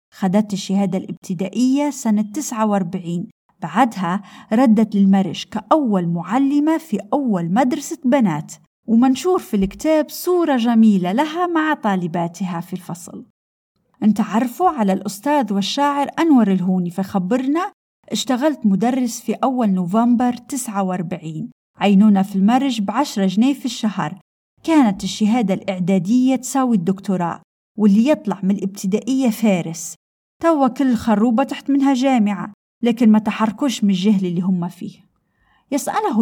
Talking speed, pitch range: 115 wpm, 195-265 Hz